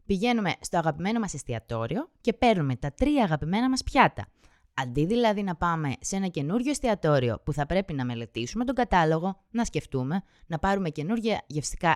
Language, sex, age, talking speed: Greek, female, 20-39, 165 wpm